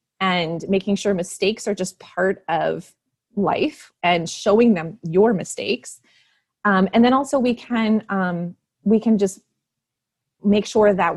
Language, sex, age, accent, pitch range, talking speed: English, female, 30-49, American, 175-225 Hz, 145 wpm